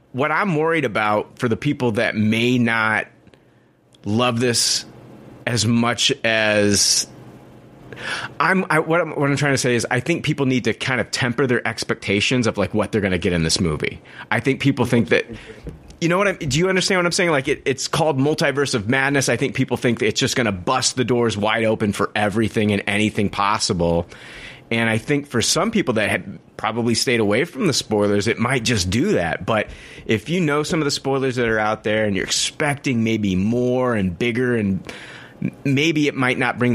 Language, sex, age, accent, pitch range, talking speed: English, male, 30-49, American, 110-135 Hz, 210 wpm